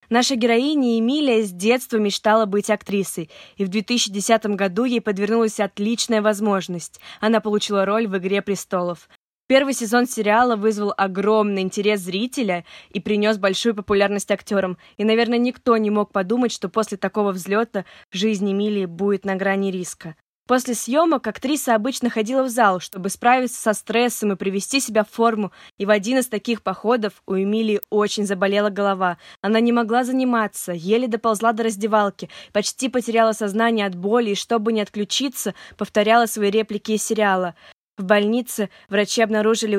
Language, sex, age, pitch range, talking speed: Russian, female, 20-39, 200-230 Hz, 155 wpm